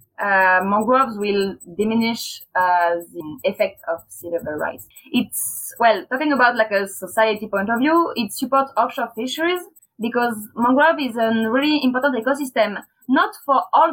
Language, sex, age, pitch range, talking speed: English, female, 20-39, 220-300 Hz, 150 wpm